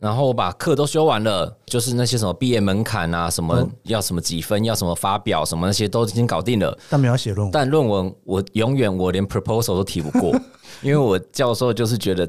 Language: Chinese